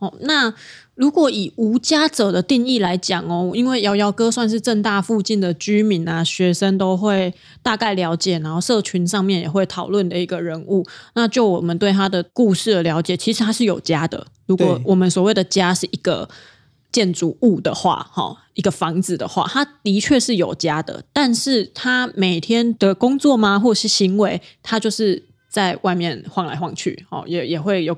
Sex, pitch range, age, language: female, 170-215 Hz, 20-39, Chinese